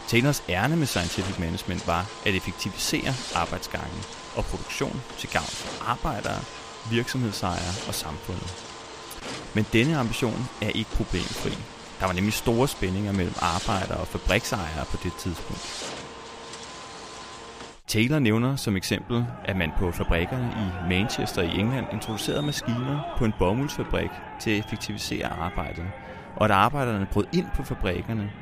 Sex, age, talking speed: male, 30-49, 135 wpm